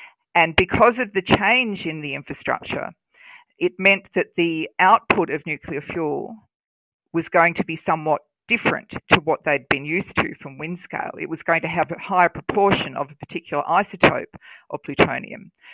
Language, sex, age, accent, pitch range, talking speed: English, female, 40-59, Australian, 160-200 Hz, 170 wpm